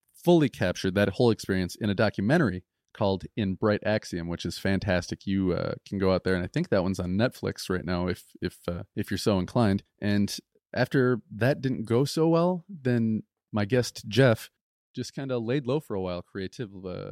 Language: English